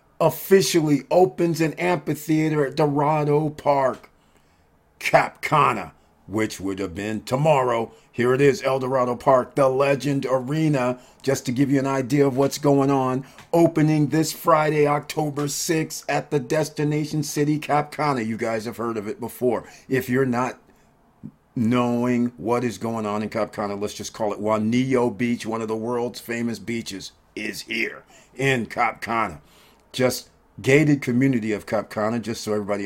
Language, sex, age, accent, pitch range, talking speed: English, male, 50-69, American, 115-145 Hz, 150 wpm